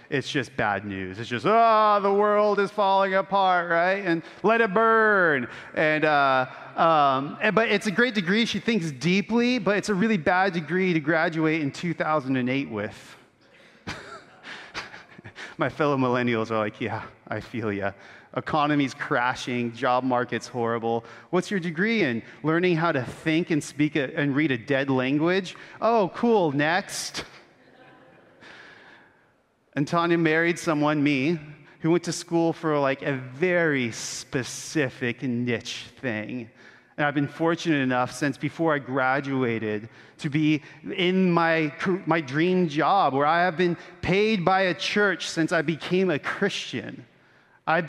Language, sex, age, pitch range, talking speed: English, male, 30-49, 130-185 Hz, 150 wpm